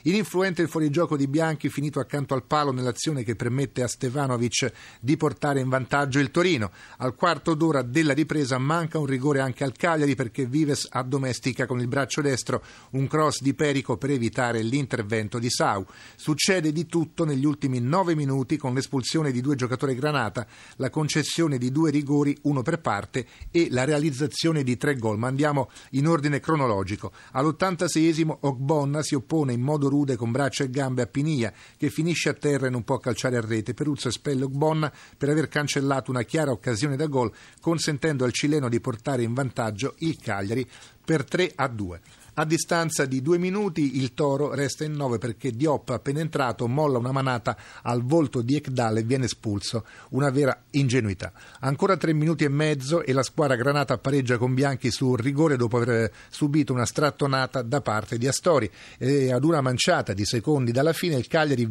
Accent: native